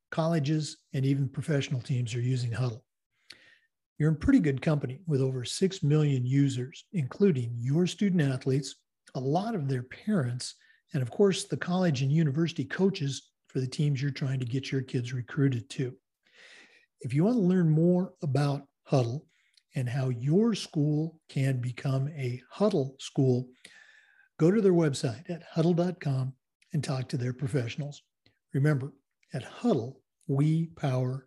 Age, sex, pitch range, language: 50-69, male, 130-170 Hz, English